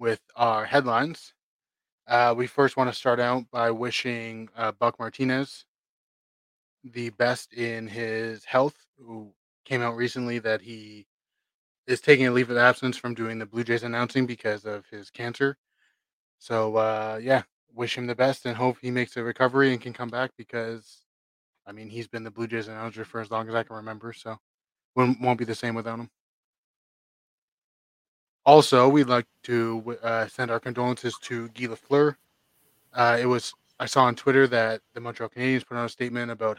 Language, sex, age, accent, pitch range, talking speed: English, male, 20-39, American, 110-125 Hz, 180 wpm